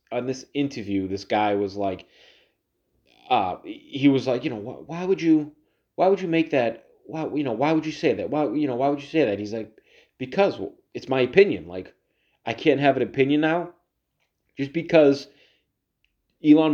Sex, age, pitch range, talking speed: male, 30-49, 110-145 Hz, 200 wpm